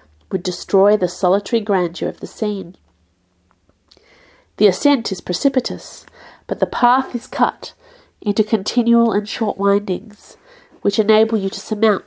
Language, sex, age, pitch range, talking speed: English, female, 50-69, 190-255 Hz, 135 wpm